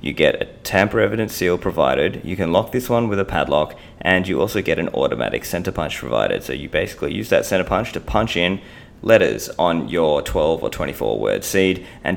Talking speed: 210 wpm